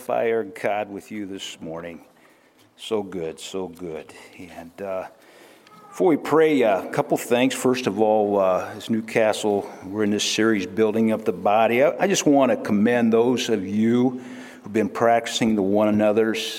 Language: English